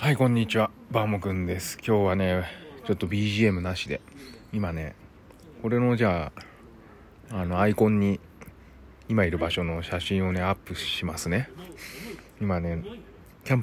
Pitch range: 85-115 Hz